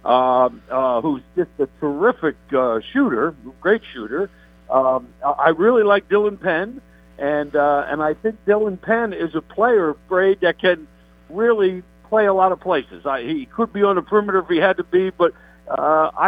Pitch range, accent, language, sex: 145-200 Hz, American, English, male